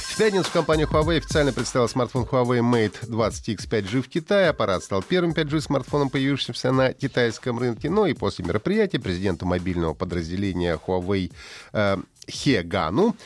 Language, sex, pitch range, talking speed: Russian, male, 100-145 Hz, 140 wpm